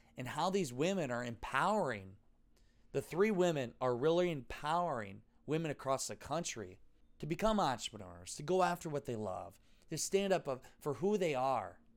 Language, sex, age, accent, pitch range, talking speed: English, male, 20-39, American, 115-155 Hz, 160 wpm